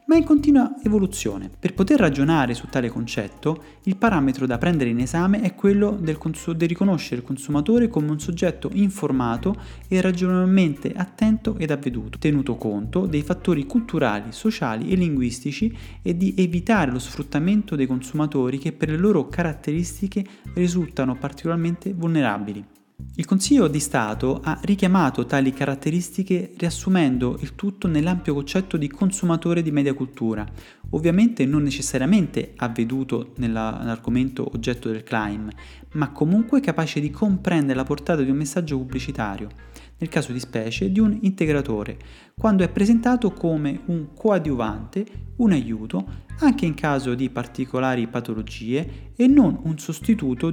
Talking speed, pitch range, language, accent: 140 wpm, 130-185 Hz, Italian, native